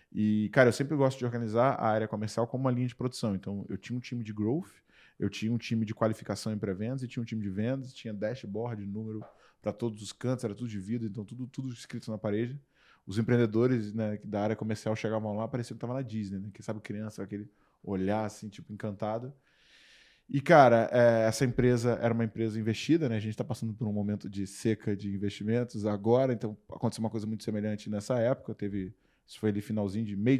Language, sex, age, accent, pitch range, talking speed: Portuguese, male, 20-39, Brazilian, 105-125 Hz, 220 wpm